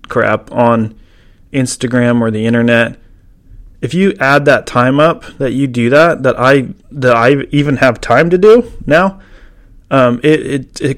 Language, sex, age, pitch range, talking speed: English, male, 30-49, 110-145 Hz, 165 wpm